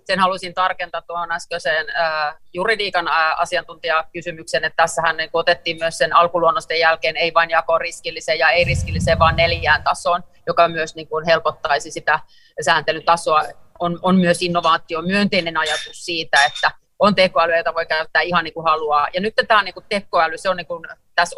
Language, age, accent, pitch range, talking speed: Finnish, 30-49, native, 160-180 Hz, 165 wpm